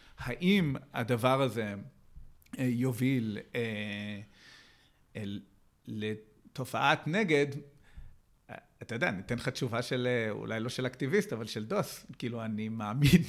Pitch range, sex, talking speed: 110-135 Hz, male, 110 wpm